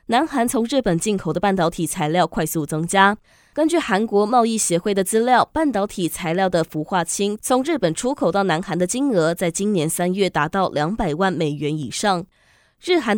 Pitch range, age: 170-230 Hz, 20-39